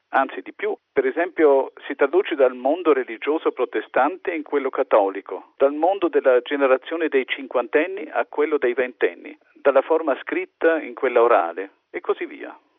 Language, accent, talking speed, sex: Italian, native, 155 wpm, male